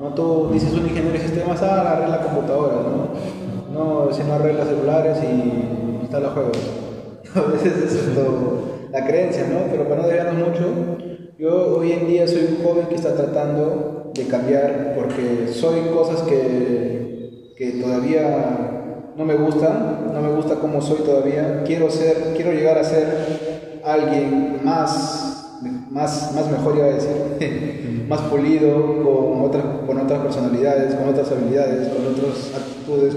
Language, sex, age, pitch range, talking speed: Spanish, male, 20-39, 140-160 Hz, 150 wpm